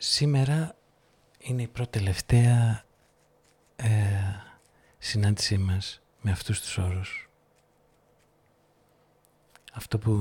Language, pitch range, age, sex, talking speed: Greek, 105-125 Hz, 50-69, male, 75 wpm